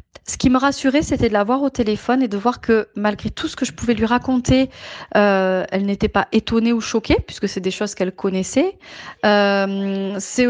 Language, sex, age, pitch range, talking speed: French, female, 30-49, 210-245 Hz, 210 wpm